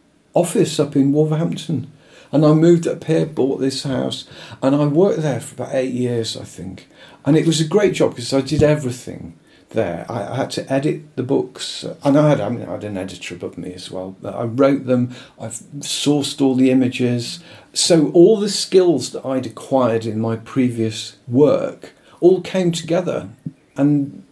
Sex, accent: male, British